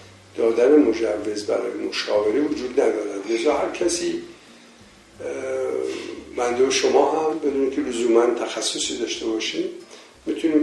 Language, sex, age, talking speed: Persian, male, 60-79, 115 wpm